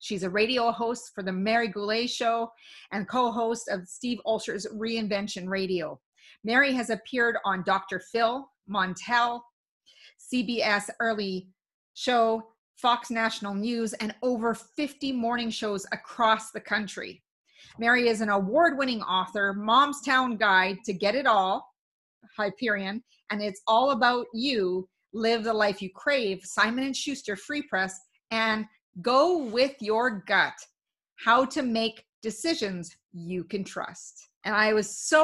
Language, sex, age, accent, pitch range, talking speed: English, female, 30-49, American, 200-240 Hz, 135 wpm